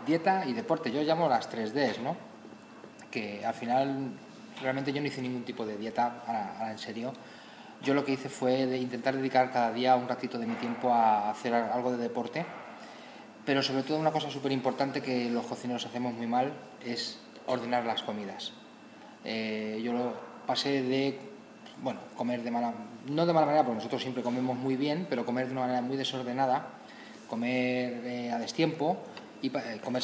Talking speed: 185 wpm